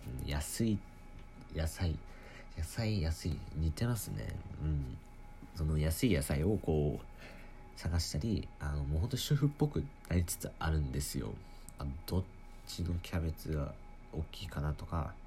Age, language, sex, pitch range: 40-59, Japanese, male, 75-95 Hz